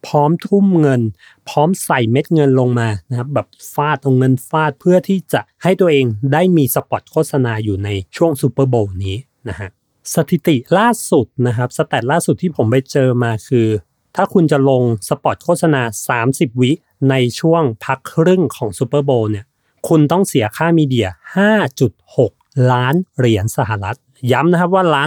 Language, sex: Thai, male